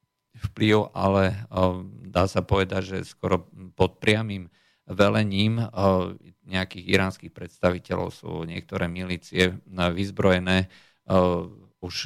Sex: male